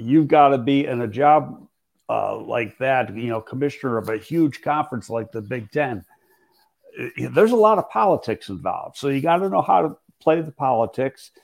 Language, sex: English, male